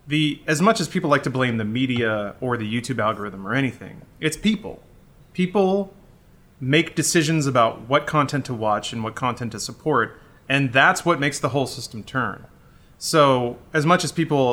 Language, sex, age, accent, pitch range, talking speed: English, male, 30-49, American, 120-160 Hz, 180 wpm